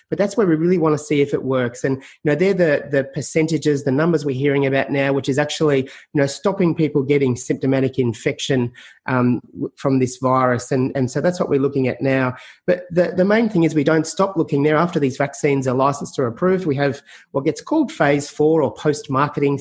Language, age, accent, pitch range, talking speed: English, 30-49, Australian, 135-160 Hz, 225 wpm